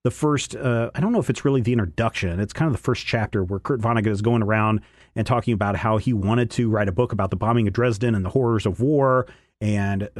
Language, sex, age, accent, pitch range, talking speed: English, male, 40-59, American, 105-125 Hz, 260 wpm